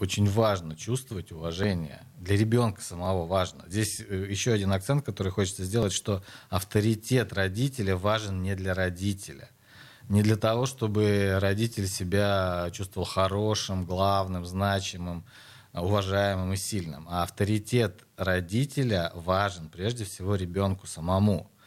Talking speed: 120 wpm